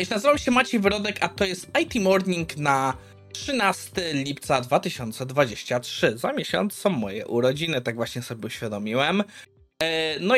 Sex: male